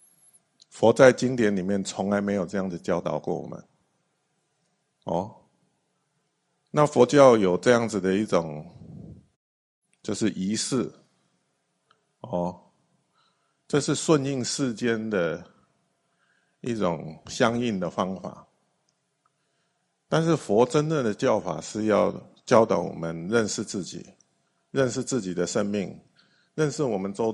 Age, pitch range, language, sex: 50-69, 95-140 Hz, Chinese, male